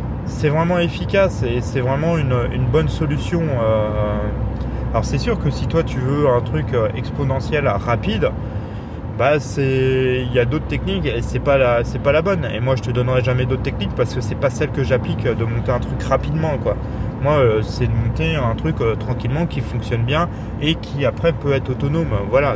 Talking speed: 200 wpm